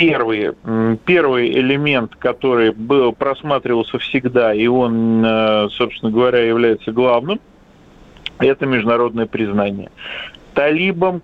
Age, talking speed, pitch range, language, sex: 40-59, 85 wpm, 120-160 Hz, Russian, male